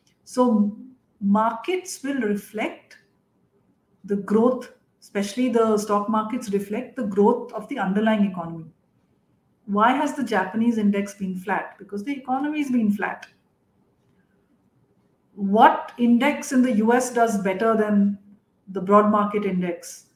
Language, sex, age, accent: English, female, 50-69, Indian